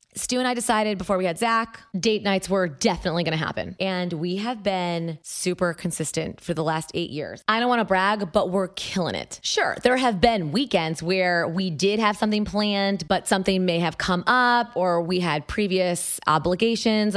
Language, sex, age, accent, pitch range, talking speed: English, female, 20-39, American, 180-235 Hz, 200 wpm